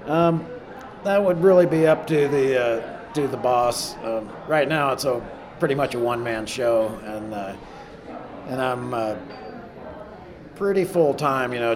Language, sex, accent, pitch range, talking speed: English, male, American, 100-130 Hz, 170 wpm